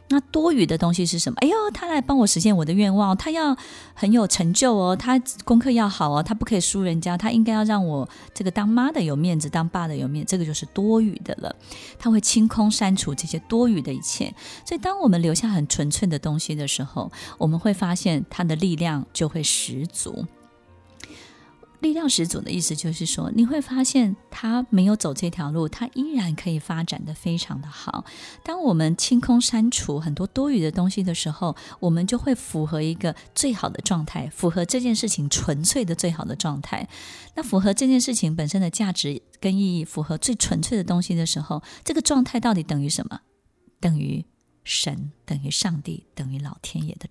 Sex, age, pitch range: female, 20-39, 160-235 Hz